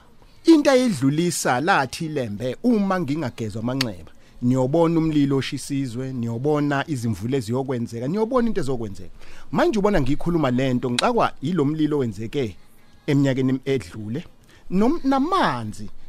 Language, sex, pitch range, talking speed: English, male, 125-155 Hz, 95 wpm